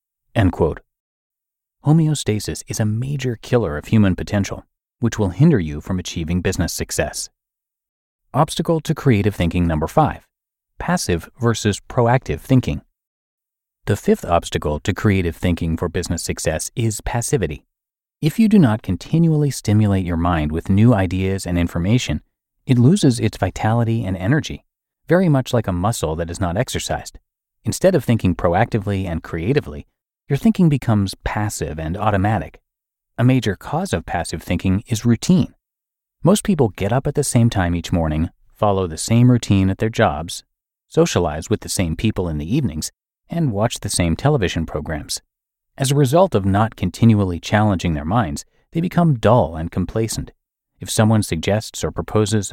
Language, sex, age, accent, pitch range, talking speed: English, male, 30-49, American, 90-125 Hz, 155 wpm